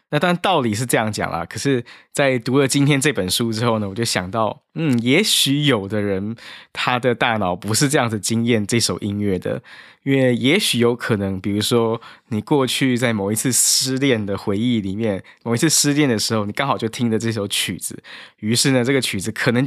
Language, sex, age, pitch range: Chinese, male, 20-39, 105-135 Hz